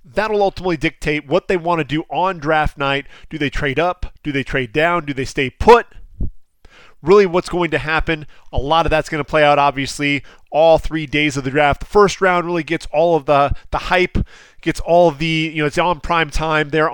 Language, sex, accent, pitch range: English, male, American, 145-180 Hz